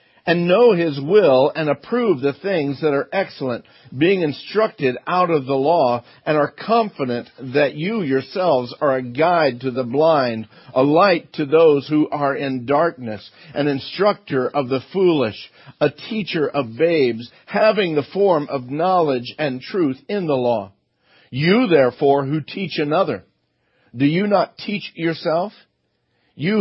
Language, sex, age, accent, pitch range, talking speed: English, male, 50-69, American, 135-175 Hz, 150 wpm